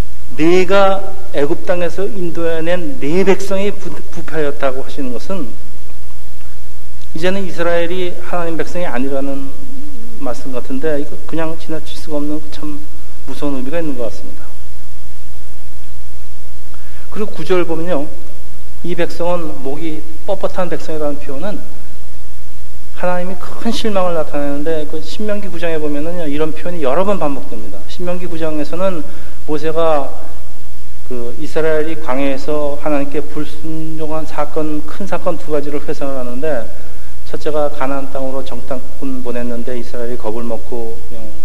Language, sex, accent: Korean, male, native